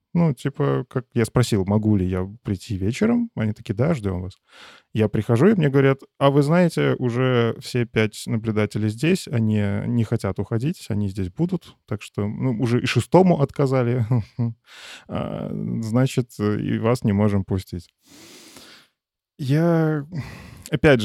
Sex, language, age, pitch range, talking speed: male, Russian, 20-39, 105-130 Hz, 145 wpm